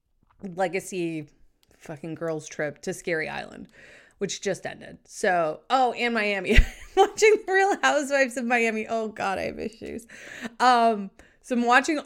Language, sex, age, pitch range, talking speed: English, female, 20-39, 180-235 Hz, 145 wpm